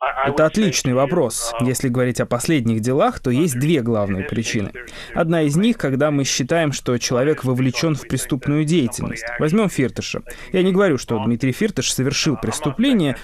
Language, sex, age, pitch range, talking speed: Russian, male, 20-39, 125-165 Hz, 160 wpm